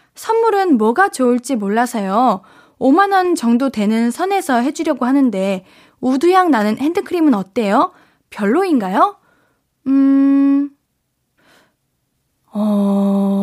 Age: 20-39